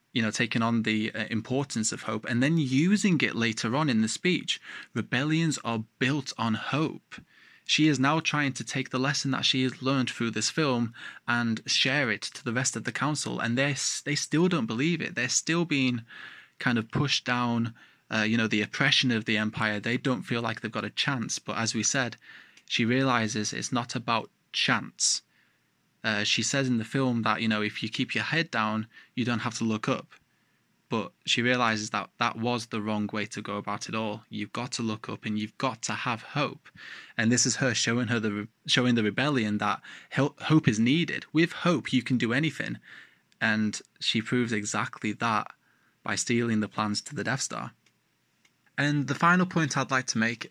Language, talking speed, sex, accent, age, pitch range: English, 210 wpm, male, British, 20-39, 110-135 Hz